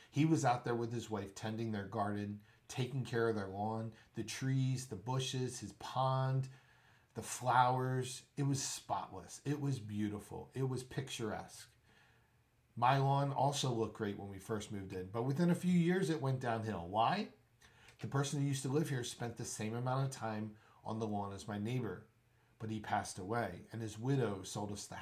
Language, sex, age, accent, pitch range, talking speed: English, male, 40-59, American, 105-130 Hz, 190 wpm